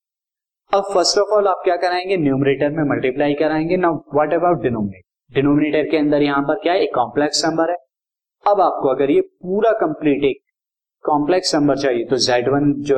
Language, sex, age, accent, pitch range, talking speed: Hindi, male, 20-39, native, 130-160 Hz, 75 wpm